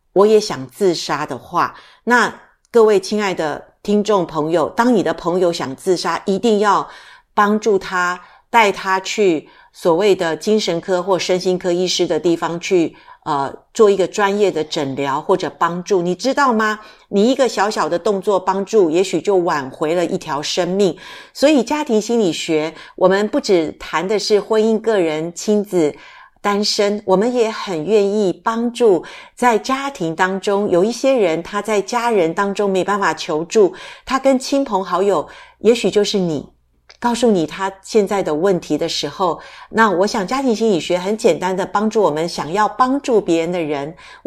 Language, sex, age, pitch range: Chinese, female, 50-69, 175-220 Hz